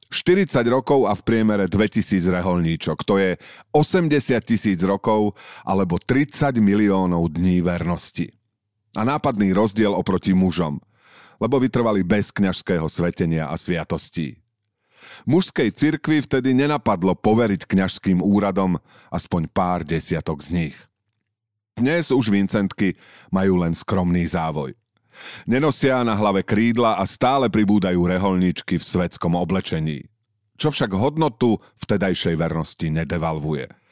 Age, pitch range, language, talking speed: 40-59, 90-125 Hz, Slovak, 115 wpm